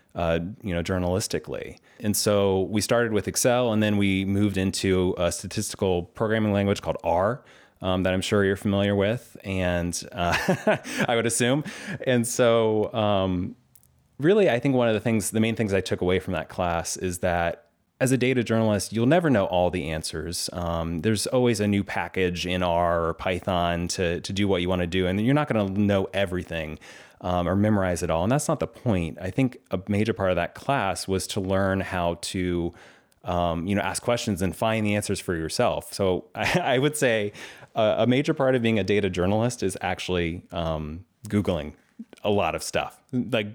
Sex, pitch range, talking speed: male, 90-110 Hz, 200 wpm